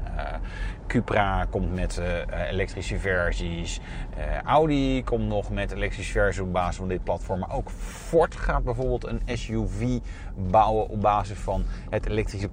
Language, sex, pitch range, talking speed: Dutch, male, 95-135 Hz, 155 wpm